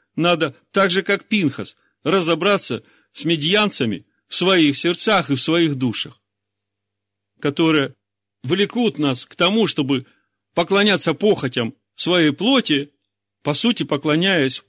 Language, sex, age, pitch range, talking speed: Russian, male, 50-69, 100-155 Hz, 115 wpm